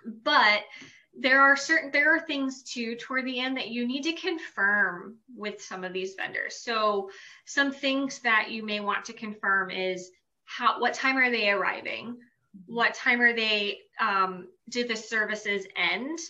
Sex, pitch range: female, 205-260 Hz